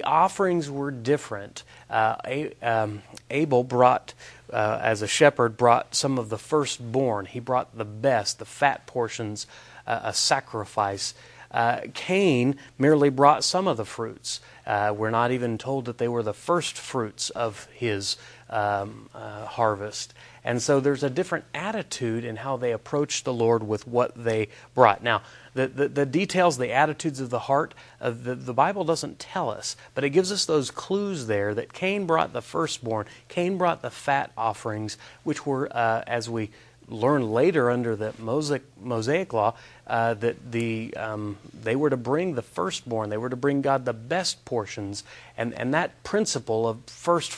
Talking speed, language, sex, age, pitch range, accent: 170 wpm, English, male, 30-49, 115-145 Hz, American